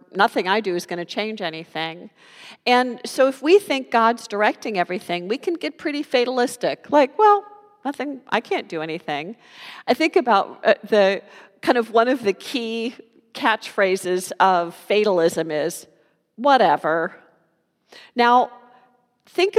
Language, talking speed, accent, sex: English, 140 wpm, American, female